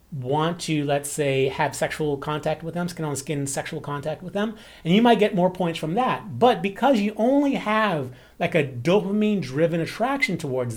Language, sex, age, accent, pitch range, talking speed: English, male, 30-49, American, 140-195 Hz, 180 wpm